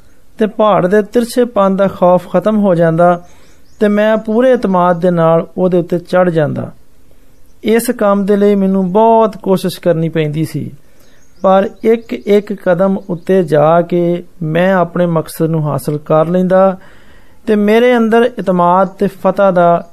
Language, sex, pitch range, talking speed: Hindi, male, 170-210 Hz, 125 wpm